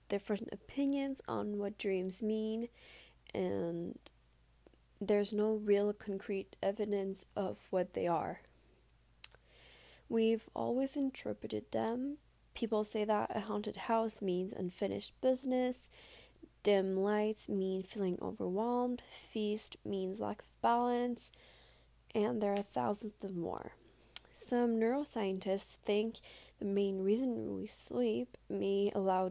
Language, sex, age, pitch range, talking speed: English, female, 10-29, 190-225 Hz, 115 wpm